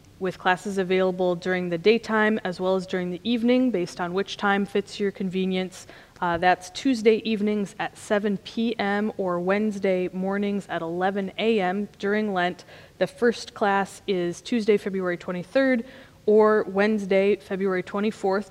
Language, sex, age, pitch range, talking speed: English, female, 20-39, 185-220 Hz, 145 wpm